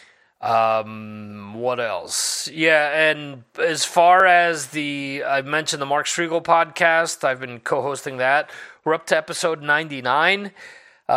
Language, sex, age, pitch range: English, male, 30-49, 130-185 Hz